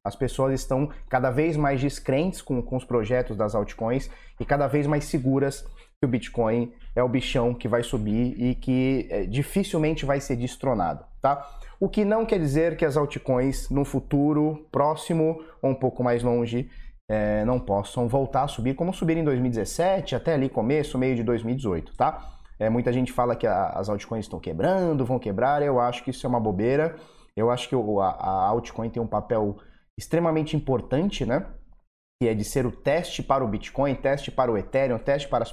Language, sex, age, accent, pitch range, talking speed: Portuguese, male, 20-39, Brazilian, 120-155 Hz, 185 wpm